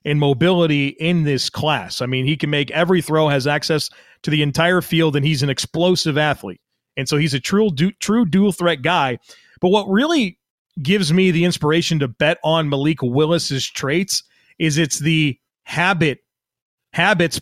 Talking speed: 175 wpm